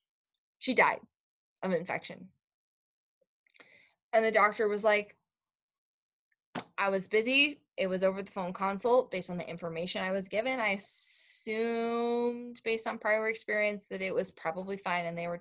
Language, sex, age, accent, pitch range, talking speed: English, female, 10-29, American, 175-230 Hz, 150 wpm